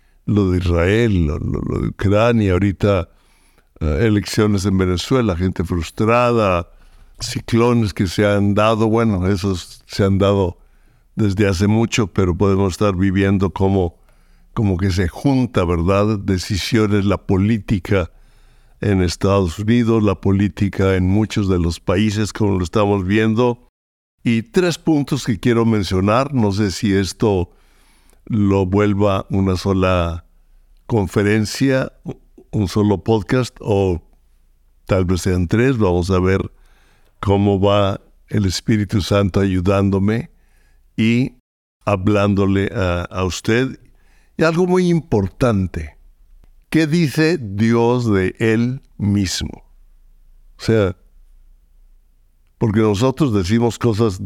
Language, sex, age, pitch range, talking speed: Spanish, male, 60-79, 90-110 Hz, 120 wpm